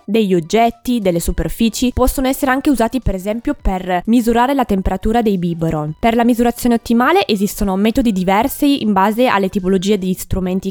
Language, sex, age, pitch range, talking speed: Italian, female, 20-39, 190-245 Hz, 165 wpm